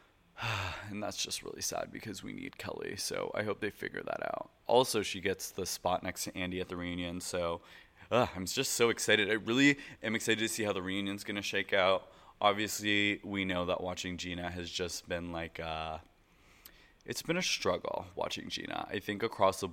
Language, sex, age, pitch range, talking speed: English, male, 20-39, 90-110 Hz, 200 wpm